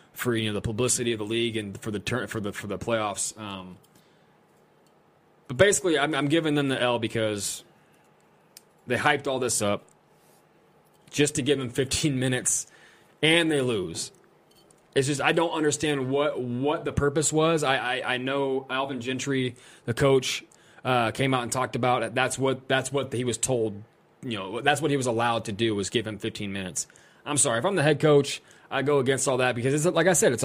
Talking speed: 205 wpm